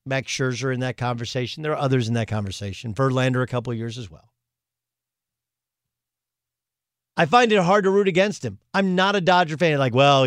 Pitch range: 120-180 Hz